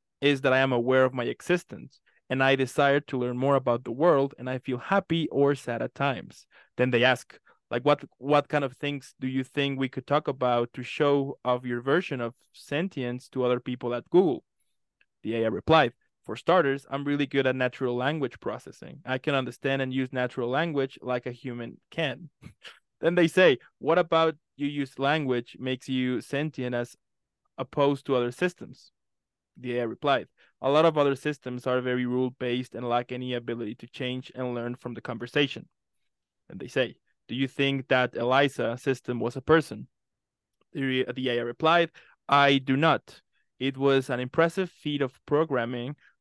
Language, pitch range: English, 125-140 Hz